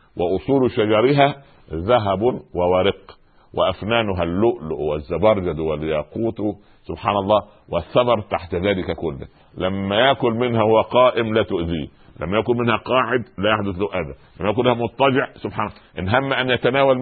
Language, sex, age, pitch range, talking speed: Arabic, male, 50-69, 85-115 Hz, 135 wpm